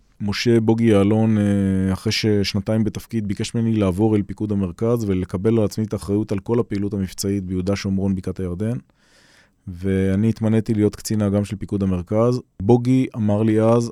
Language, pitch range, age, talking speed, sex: Hebrew, 100-115 Hz, 20-39, 155 wpm, male